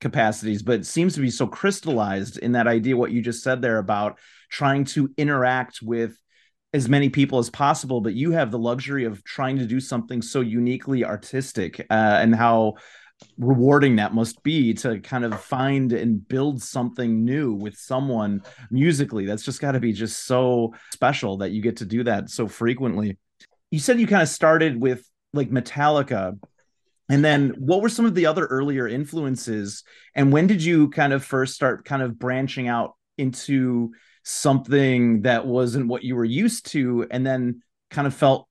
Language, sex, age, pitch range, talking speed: English, male, 30-49, 115-140 Hz, 185 wpm